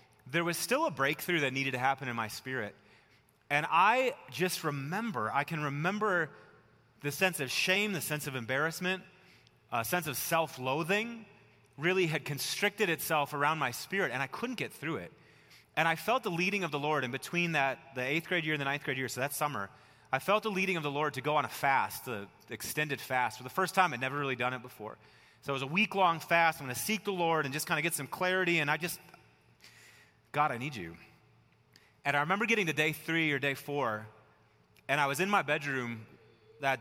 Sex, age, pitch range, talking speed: male, 30-49, 135-170 Hz, 220 wpm